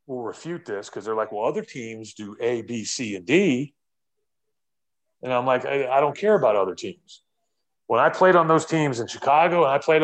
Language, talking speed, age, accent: English, 215 wpm, 30-49, American